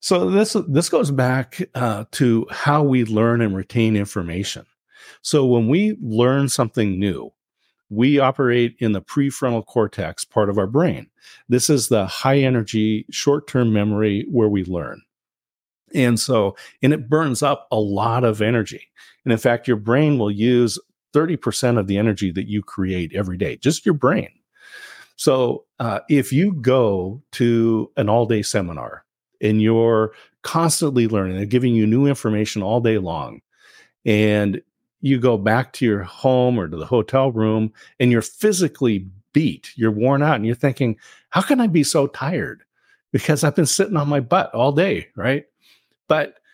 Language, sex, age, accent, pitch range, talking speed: English, male, 40-59, American, 110-140 Hz, 165 wpm